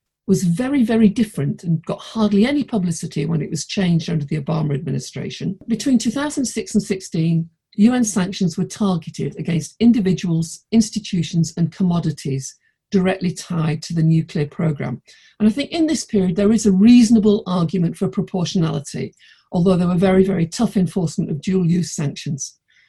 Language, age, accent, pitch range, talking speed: English, 50-69, British, 165-210 Hz, 155 wpm